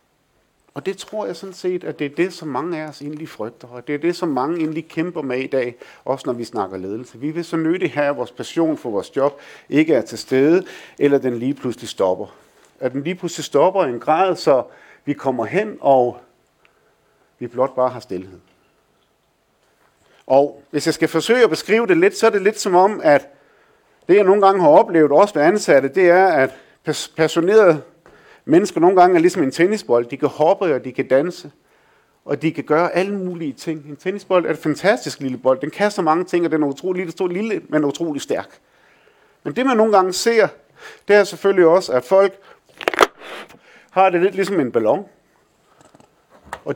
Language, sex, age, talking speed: Danish, male, 50-69, 205 wpm